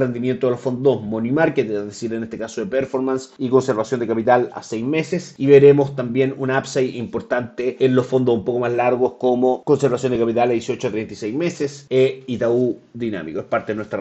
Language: Spanish